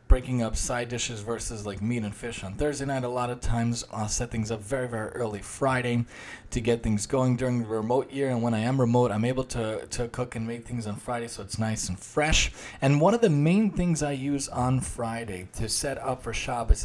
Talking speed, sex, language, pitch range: 240 wpm, male, English, 110-130 Hz